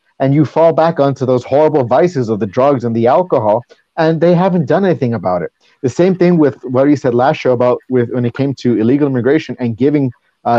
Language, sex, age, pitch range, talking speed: English, male, 30-49, 130-160 Hz, 230 wpm